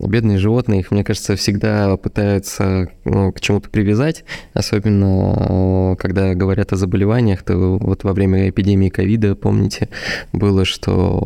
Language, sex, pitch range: Russian, male, 95-110 Hz